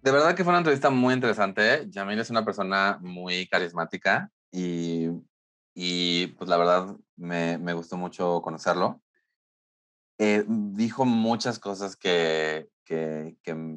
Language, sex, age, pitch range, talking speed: Spanish, male, 30-49, 85-110 Hz, 135 wpm